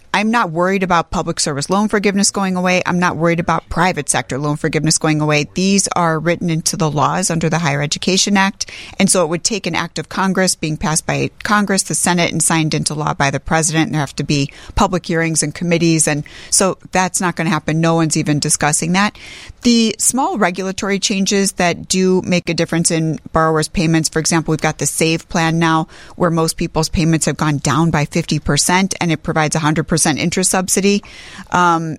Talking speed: 210 wpm